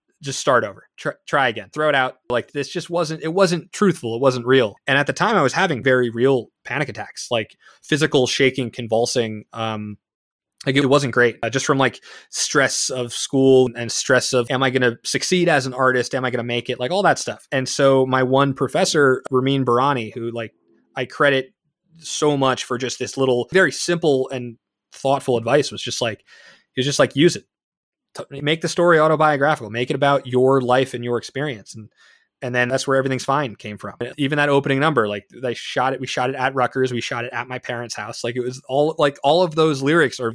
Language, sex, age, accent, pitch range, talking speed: English, male, 20-39, American, 120-150 Hz, 225 wpm